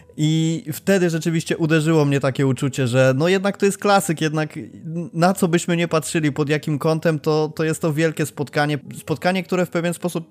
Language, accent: Polish, native